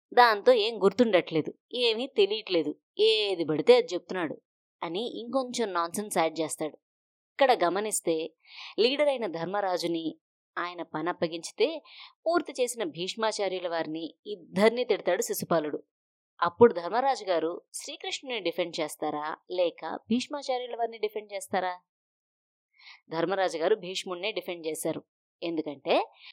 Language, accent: Telugu, native